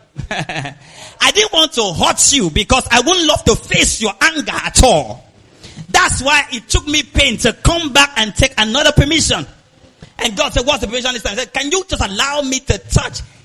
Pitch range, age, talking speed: 230-340 Hz, 40-59, 195 wpm